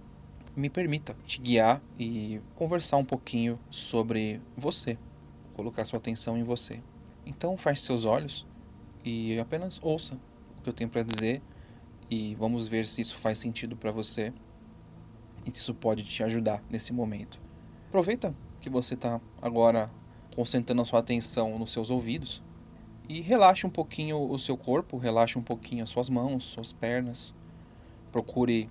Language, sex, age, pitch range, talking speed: Portuguese, male, 20-39, 115-140 Hz, 155 wpm